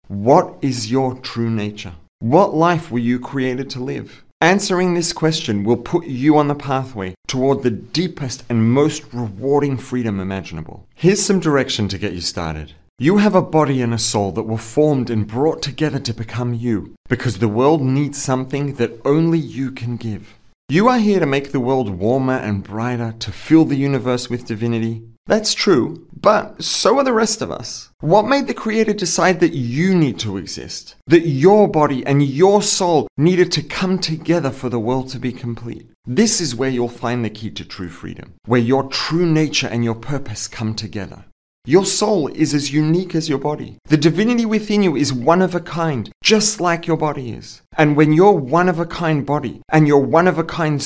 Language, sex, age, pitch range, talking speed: English, male, 30-49, 115-160 Hz, 190 wpm